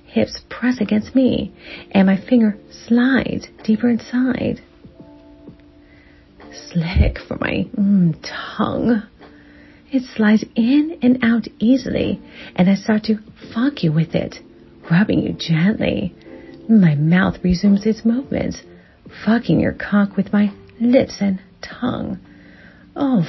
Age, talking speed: 40-59, 120 wpm